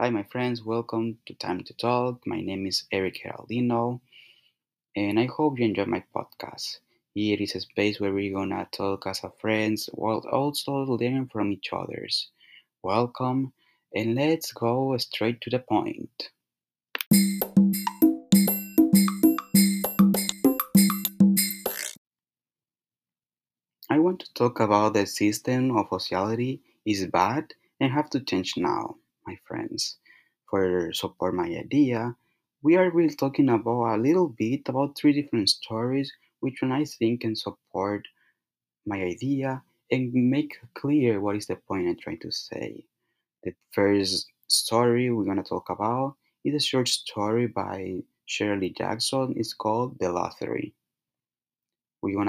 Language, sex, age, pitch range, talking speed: English, male, 30-49, 100-140 Hz, 140 wpm